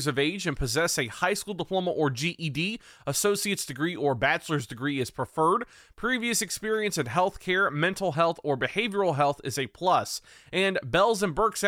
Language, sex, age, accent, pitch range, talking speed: English, male, 20-39, American, 150-195 Hz, 185 wpm